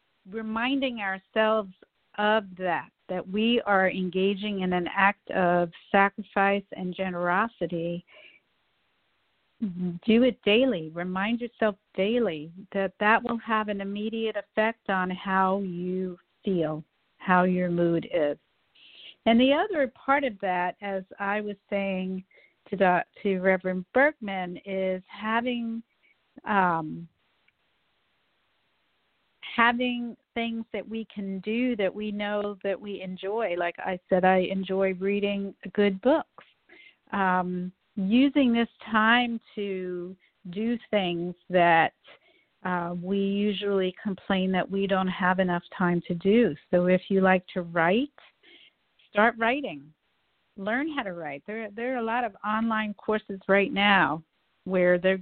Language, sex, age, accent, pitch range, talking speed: English, female, 50-69, American, 185-220 Hz, 125 wpm